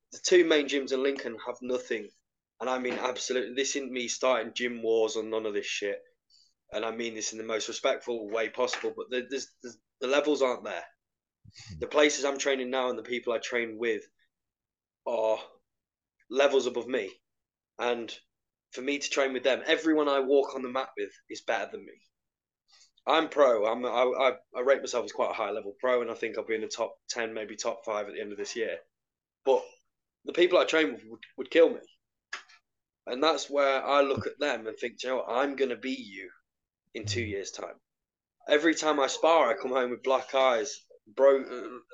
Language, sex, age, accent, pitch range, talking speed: English, male, 20-39, British, 125-160 Hz, 210 wpm